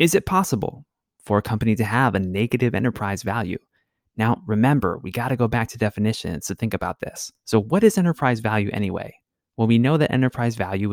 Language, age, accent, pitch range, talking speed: English, 20-39, American, 100-130 Hz, 200 wpm